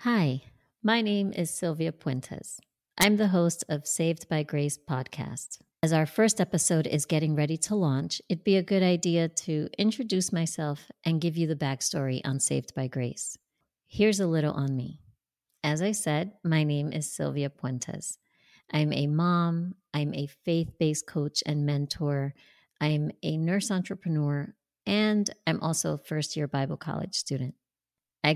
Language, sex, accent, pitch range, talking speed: English, female, American, 150-175 Hz, 160 wpm